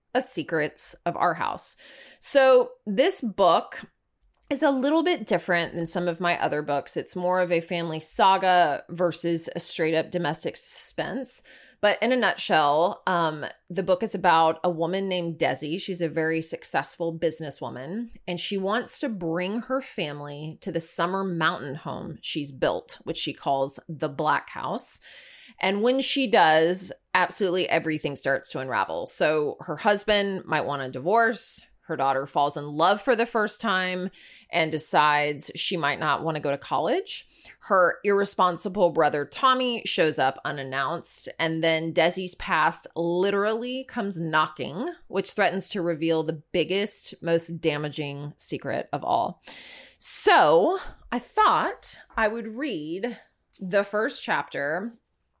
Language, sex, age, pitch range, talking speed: English, female, 30-49, 160-220 Hz, 150 wpm